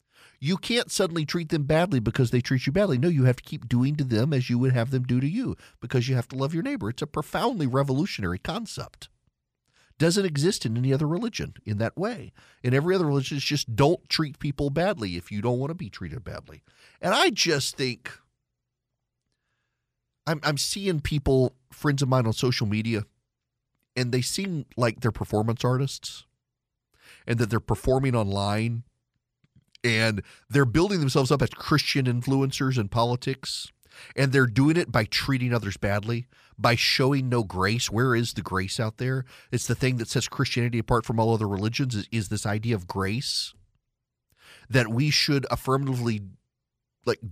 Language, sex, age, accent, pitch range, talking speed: English, male, 40-59, American, 115-140 Hz, 185 wpm